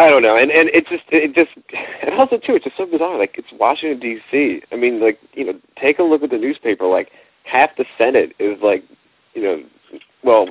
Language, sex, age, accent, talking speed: English, male, 40-59, American, 230 wpm